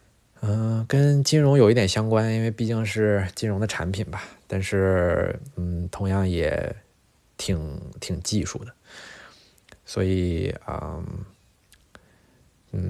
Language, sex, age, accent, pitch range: Chinese, male, 20-39, native, 90-105 Hz